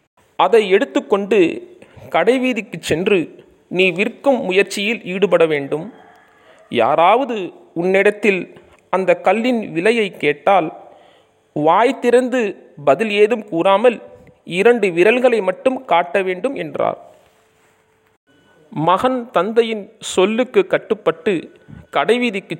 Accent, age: native, 40-59